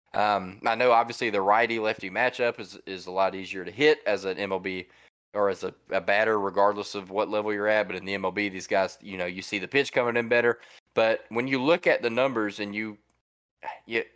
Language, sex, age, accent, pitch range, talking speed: English, male, 20-39, American, 95-120 Hz, 230 wpm